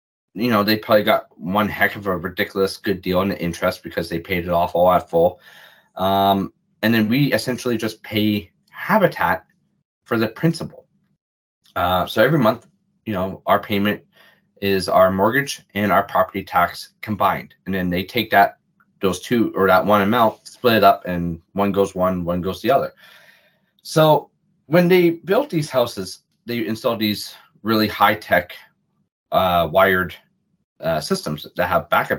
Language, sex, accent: English, male, American